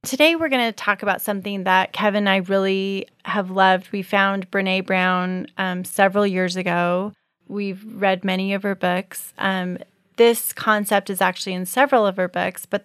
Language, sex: English, female